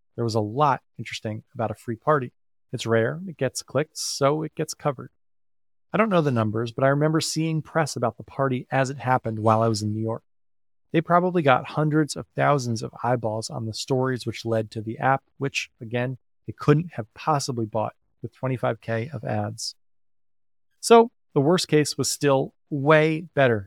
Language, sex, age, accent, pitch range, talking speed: English, male, 30-49, American, 115-140 Hz, 190 wpm